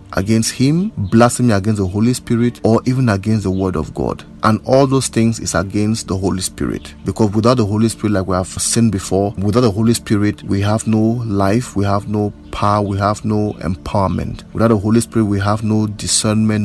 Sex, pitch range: male, 100-115 Hz